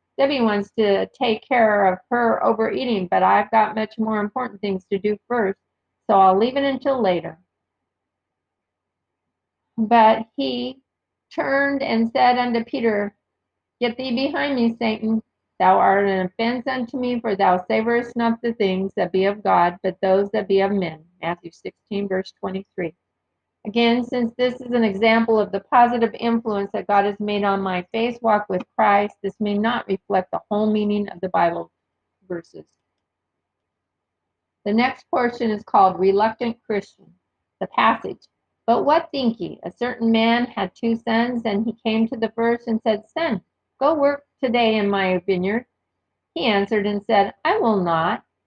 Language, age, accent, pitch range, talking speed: English, 50-69, American, 190-235 Hz, 165 wpm